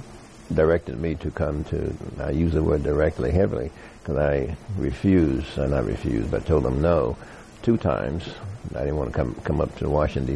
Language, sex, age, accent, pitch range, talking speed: English, male, 60-79, American, 75-100 Hz, 190 wpm